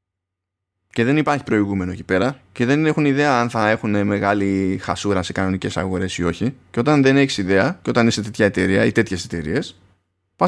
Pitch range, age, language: 95-140 Hz, 20-39, Greek